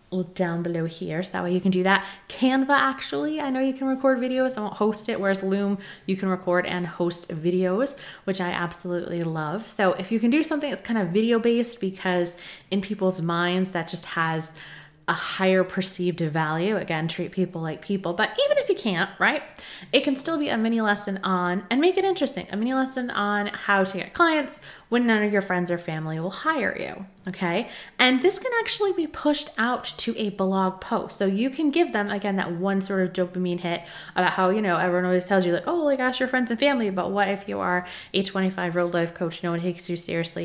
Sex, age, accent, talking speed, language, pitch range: female, 20-39, American, 225 wpm, English, 175-230 Hz